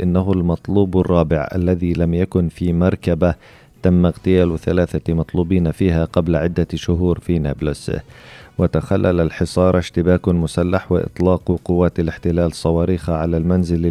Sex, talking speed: male, 120 wpm